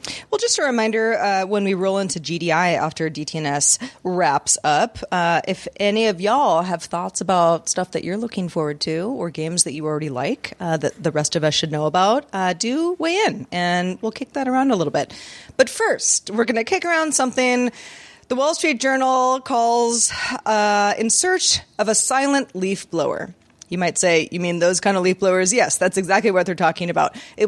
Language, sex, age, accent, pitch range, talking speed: English, female, 30-49, American, 180-235 Hz, 205 wpm